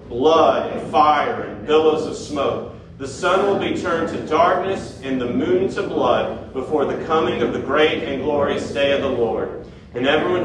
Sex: male